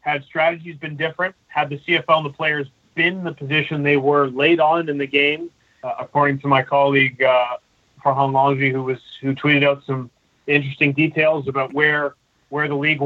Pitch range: 135-155 Hz